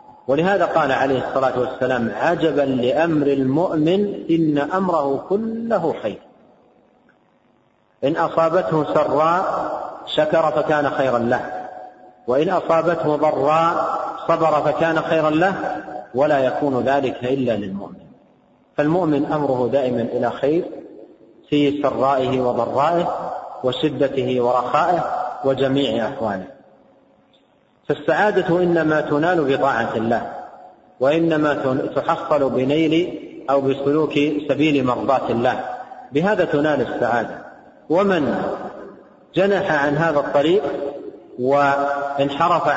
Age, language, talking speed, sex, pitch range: 40-59, Arabic, 90 wpm, male, 135-165 Hz